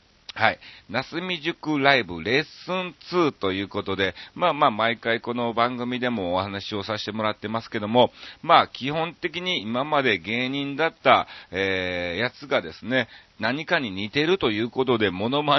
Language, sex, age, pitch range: Japanese, male, 40-59, 100-140 Hz